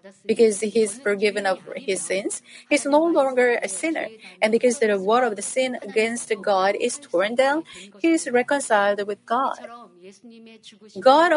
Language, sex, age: Korean, female, 40-59